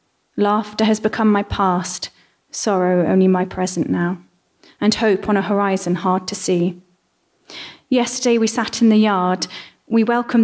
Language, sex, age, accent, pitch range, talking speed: English, female, 30-49, British, 190-225 Hz, 150 wpm